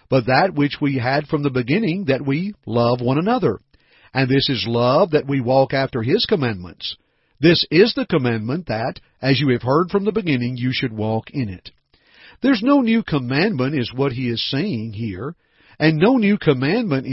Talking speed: 190 wpm